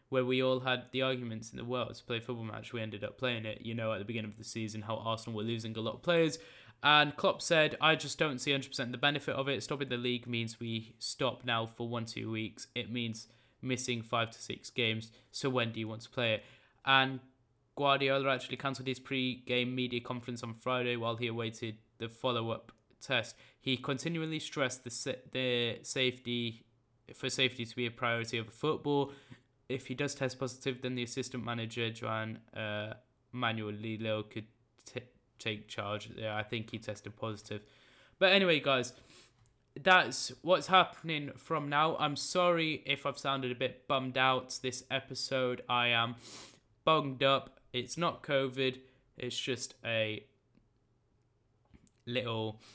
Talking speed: 175 wpm